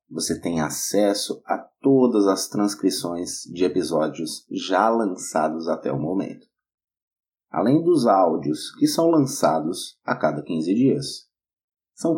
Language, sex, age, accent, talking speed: Portuguese, male, 30-49, Brazilian, 125 wpm